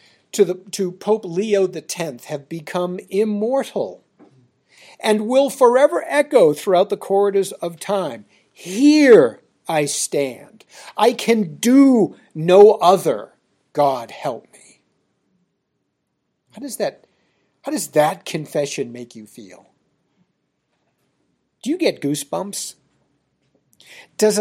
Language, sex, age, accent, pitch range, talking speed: English, male, 50-69, American, 165-240 Hz, 110 wpm